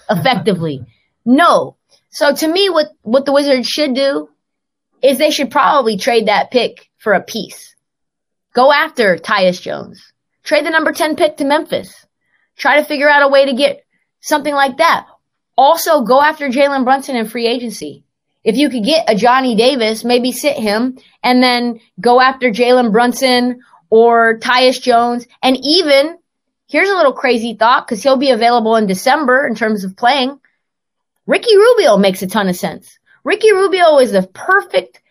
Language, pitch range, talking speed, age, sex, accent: English, 230-290 Hz, 170 wpm, 20-39, female, American